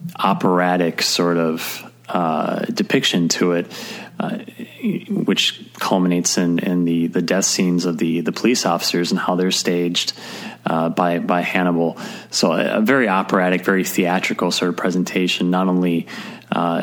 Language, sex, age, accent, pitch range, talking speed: English, male, 30-49, American, 85-95 Hz, 150 wpm